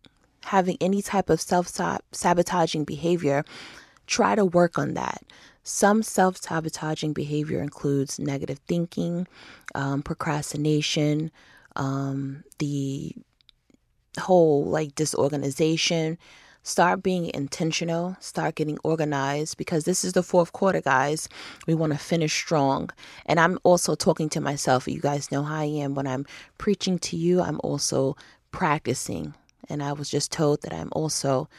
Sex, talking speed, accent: female, 130 wpm, American